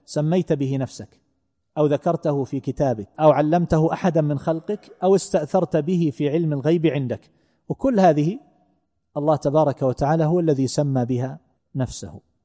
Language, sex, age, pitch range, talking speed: Arabic, male, 40-59, 135-170 Hz, 140 wpm